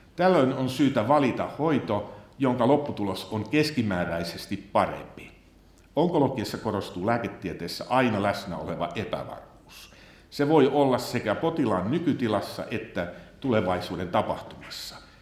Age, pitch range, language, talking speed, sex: 60-79, 90-125 Hz, Finnish, 105 wpm, male